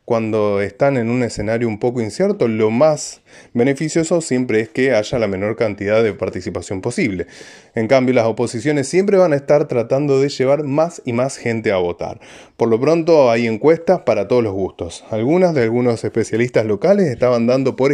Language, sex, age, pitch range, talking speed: Spanish, male, 20-39, 115-160 Hz, 185 wpm